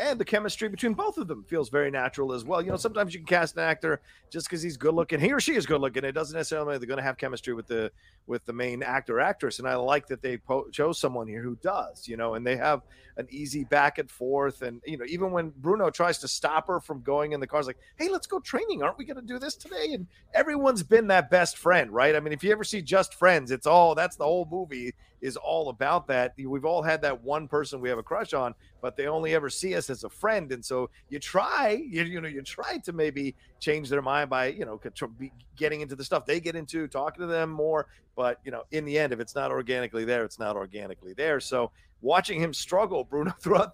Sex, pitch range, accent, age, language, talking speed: male, 130-175 Hz, American, 40-59, English, 260 wpm